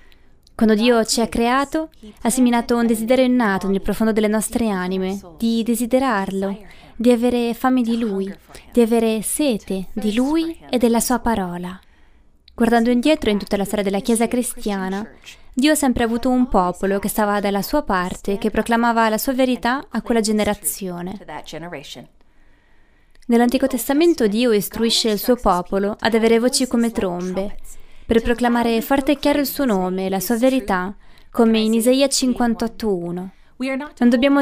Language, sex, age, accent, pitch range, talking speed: Italian, female, 20-39, native, 200-250 Hz, 155 wpm